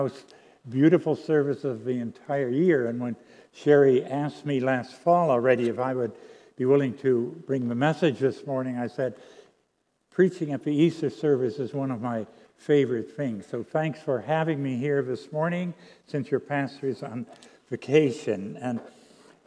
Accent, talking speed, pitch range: American, 165 wpm, 135-185 Hz